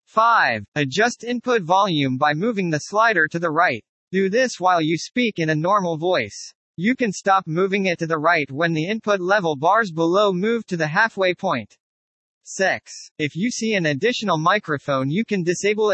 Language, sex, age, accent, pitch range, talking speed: English, male, 40-59, American, 160-210 Hz, 185 wpm